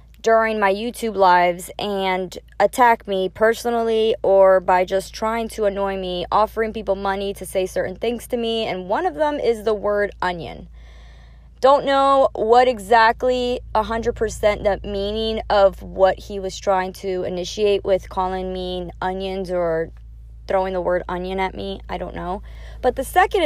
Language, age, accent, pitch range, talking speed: English, 20-39, American, 190-240 Hz, 160 wpm